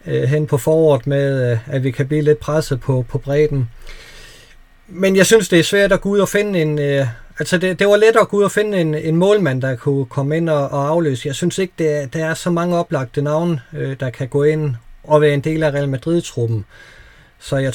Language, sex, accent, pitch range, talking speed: Danish, male, native, 130-155 Hz, 240 wpm